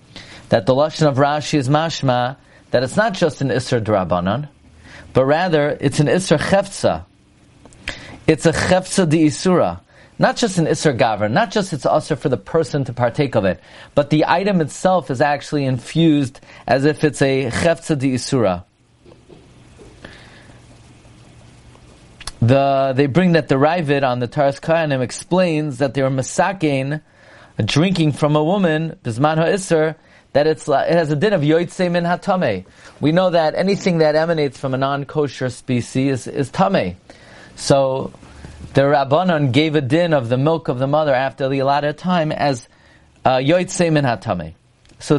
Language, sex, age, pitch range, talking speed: English, male, 40-59, 130-165 Hz, 160 wpm